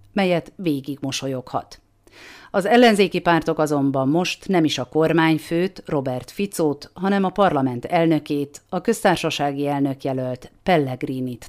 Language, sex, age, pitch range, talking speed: Hungarian, female, 40-59, 135-180 Hz, 115 wpm